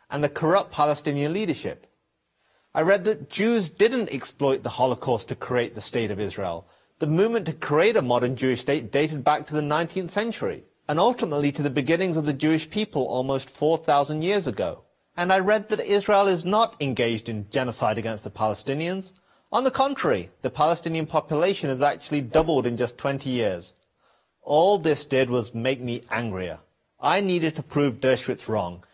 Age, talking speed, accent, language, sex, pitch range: 30-49, 175 wpm, British, English, male, 125-185 Hz